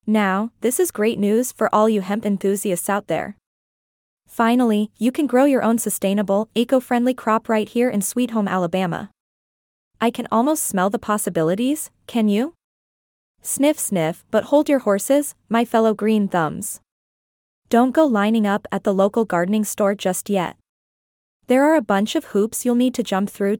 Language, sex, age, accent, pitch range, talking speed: English, female, 20-39, American, 200-245 Hz, 170 wpm